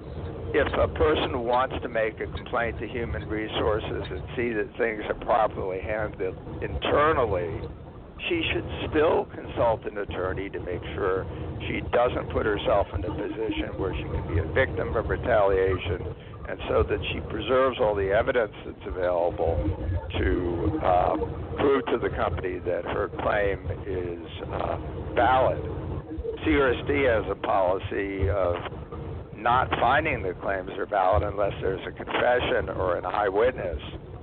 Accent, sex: American, male